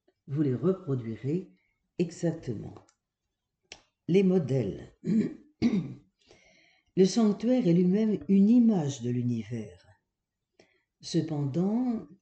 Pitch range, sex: 130-190 Hz, female